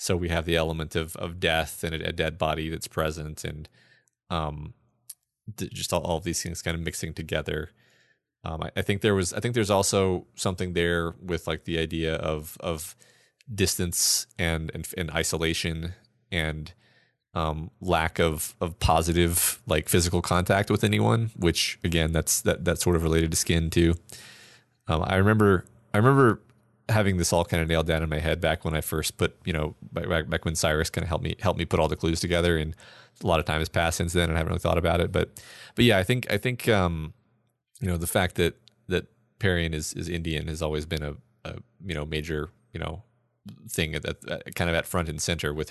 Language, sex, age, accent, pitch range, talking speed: English, male, 30-49, American, 80-95 Hz, 215 wpm